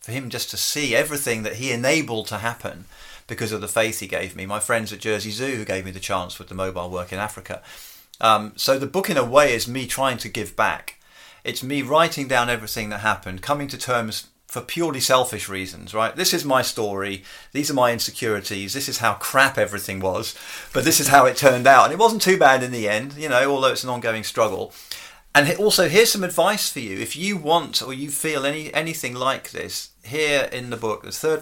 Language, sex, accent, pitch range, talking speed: English, male, British, 105-140 Hz, 230 wpm